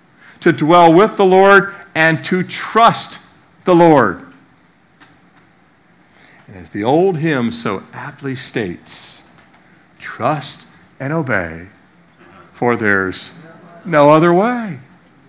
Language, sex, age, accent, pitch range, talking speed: English, male, 50-69, American, 115-175 Hz, 100 wpm